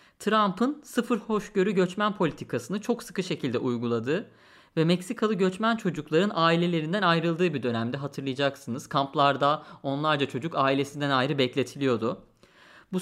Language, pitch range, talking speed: Turkish, 135-200 Hz, 115 wpm